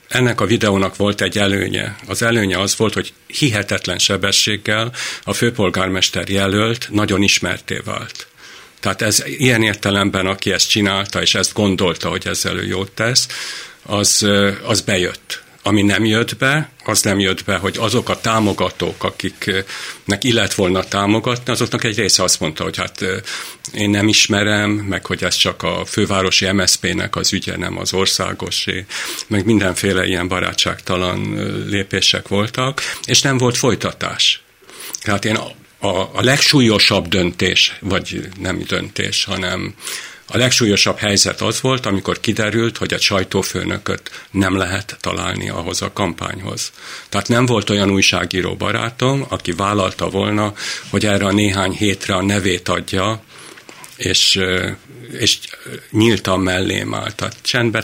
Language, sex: Hungarian, male